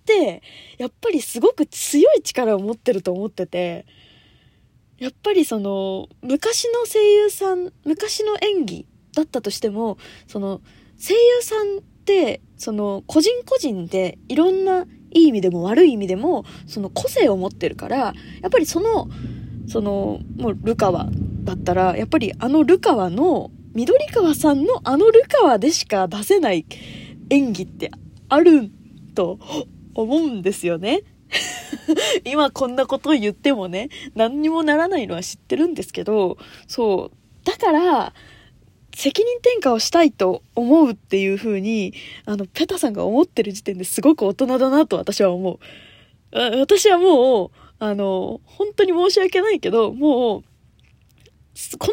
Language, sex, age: Japanese, female, 20-39